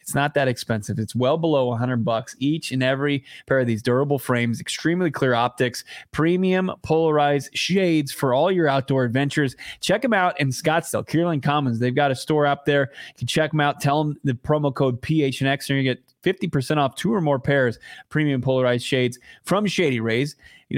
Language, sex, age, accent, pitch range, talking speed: English, male, 20-39, American, 125-155 Hz, 200 wpm